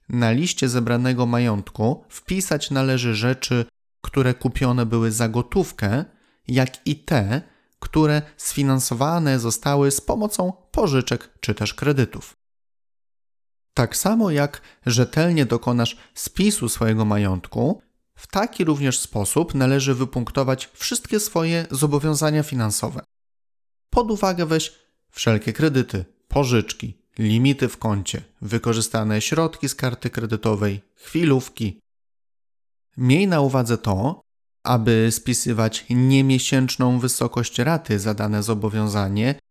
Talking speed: 105 wpm